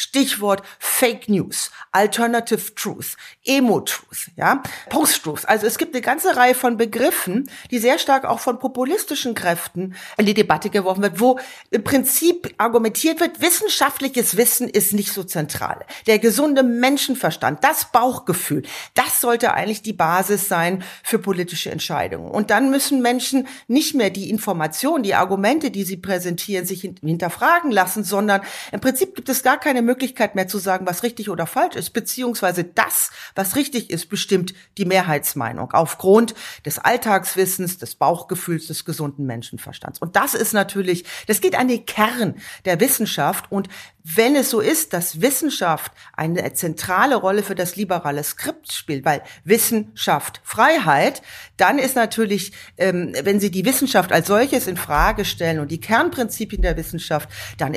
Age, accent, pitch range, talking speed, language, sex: 40-59, German, 180-250 Hz, 155 wpm, German, female